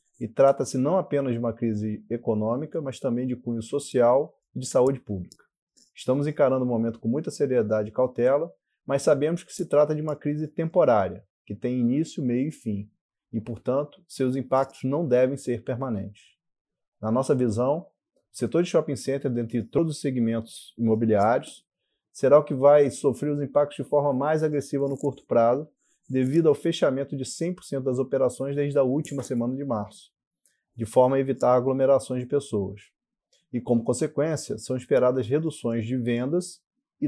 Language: Portuguese